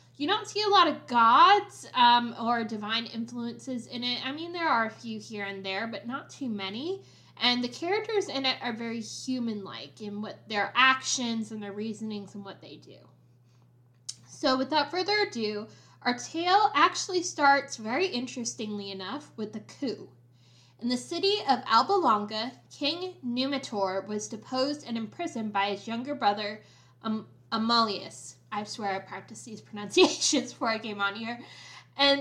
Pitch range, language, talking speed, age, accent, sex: 210-270 Hz, English, 160 wpm, 10-29, American, female